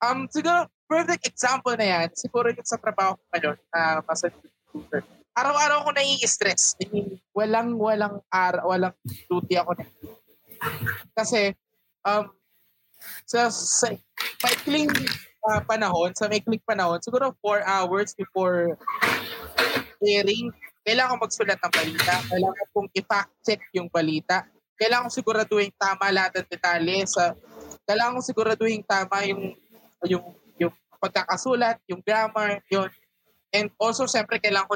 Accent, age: native, 20-39